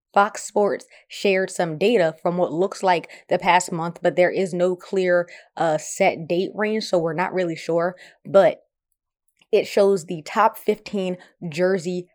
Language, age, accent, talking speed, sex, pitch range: English, 20-39, American, 165 wpm, female, 170-195 Hz